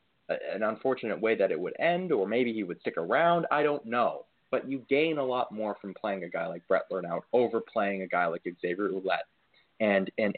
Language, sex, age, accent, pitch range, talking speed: English, male, 20-39, American, 105-130 Hz, 220 wpm